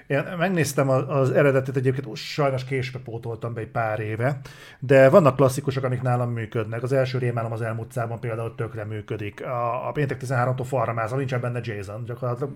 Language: Hungarian